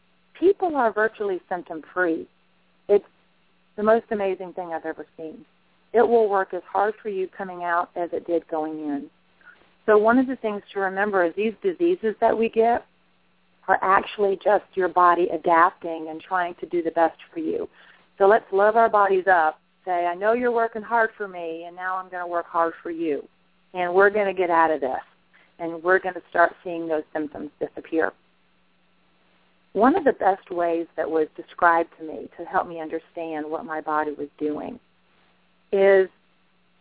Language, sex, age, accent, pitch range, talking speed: English, female, 40-59, American, 165-205 Hz, 185 wpm